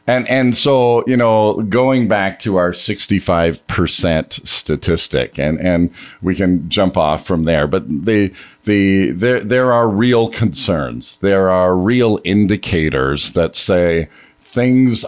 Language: English